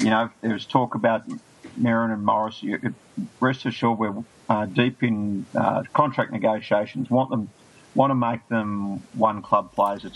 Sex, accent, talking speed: male, Australian, 170 wpm